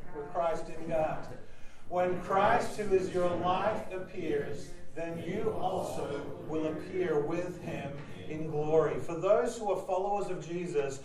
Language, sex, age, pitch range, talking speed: English, male, 40-59, 180-215 Hz, 145 wpm